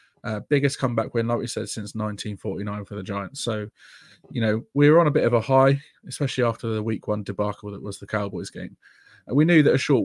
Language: English